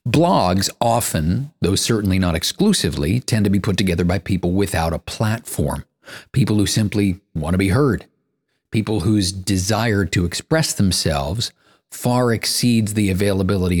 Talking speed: 145 wpm